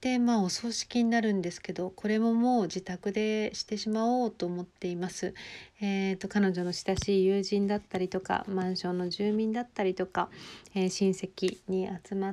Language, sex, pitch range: Japanese, female, 185-220 Hz